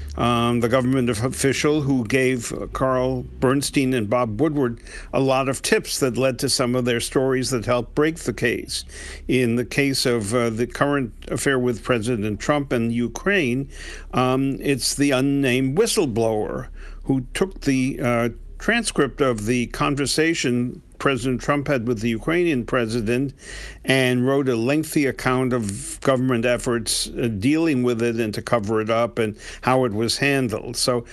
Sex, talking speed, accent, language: male, 160 wpm, American, English